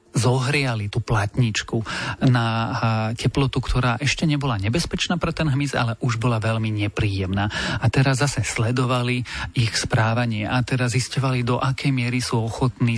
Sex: male